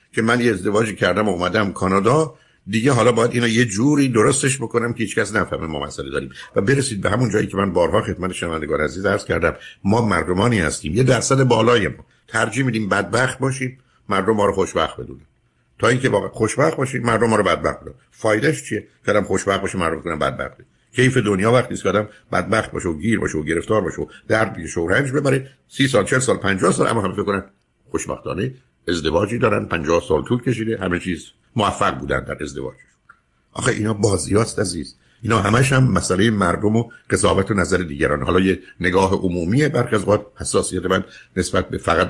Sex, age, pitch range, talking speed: male, 60-79, 95-120 Hz, 180 wpm